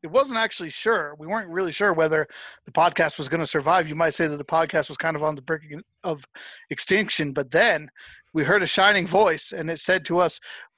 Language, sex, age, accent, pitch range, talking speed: English, male, 40-59, American, 155-215 Hz, 230 wpm